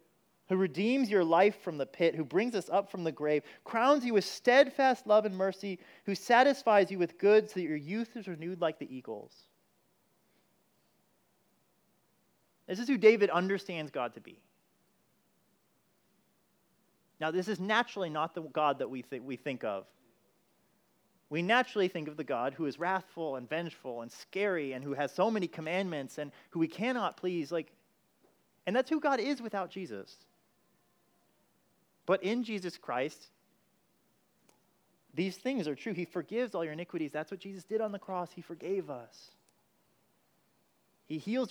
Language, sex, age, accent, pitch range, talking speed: English, male, 30-49, American, 155-200 Hz, 165 wpm